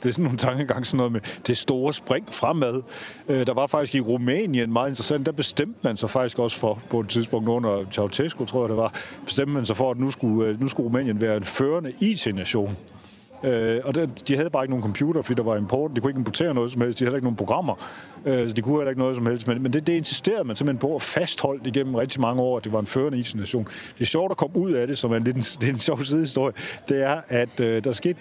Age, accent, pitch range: 40-59, native, 115-145 Hz